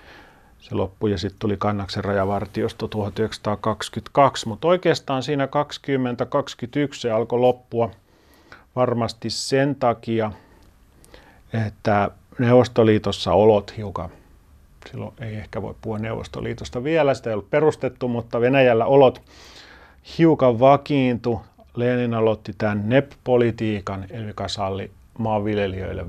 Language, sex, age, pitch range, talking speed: Finnish, male, 40-59, 100-120 Hz, 105 wpm